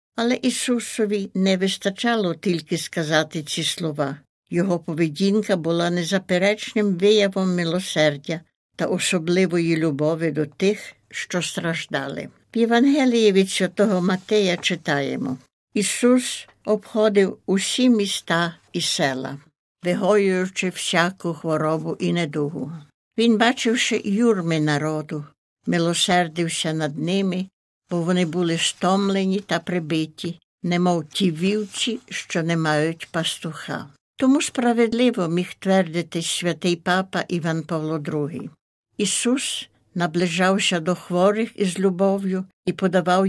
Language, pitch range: Ukrainian, 165-200 Hz